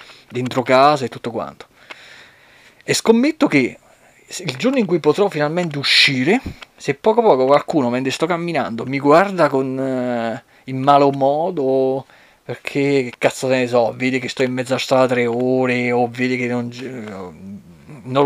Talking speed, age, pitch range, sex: 165 wpm, 30-49, 130-175 Hz, male